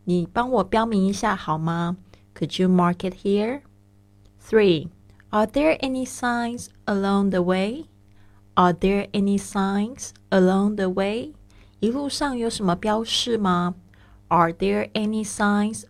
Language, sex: Chinese, female